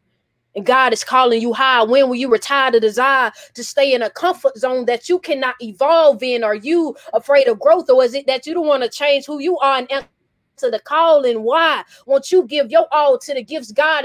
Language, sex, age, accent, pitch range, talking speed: English, female, 20-39, American, 255-320 Hz, 230 wpm